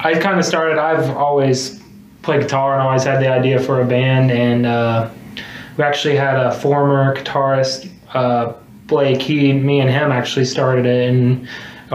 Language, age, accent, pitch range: English, 20-39, American, 130-150 Hz